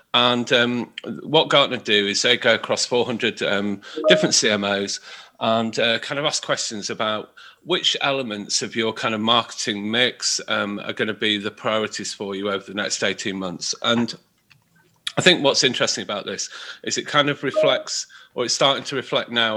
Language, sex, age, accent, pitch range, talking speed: English, male, 40-59, British, 105-120 Hz, 185 wpm